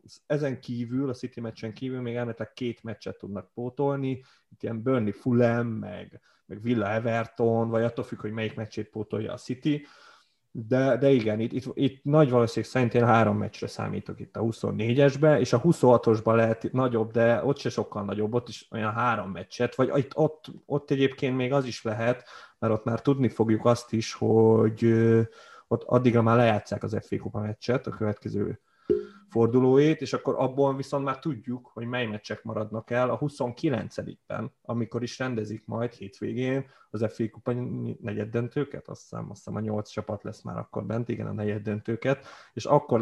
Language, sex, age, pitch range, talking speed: Hungarian, male, 30-49, 110-130 Hz, 170 wpm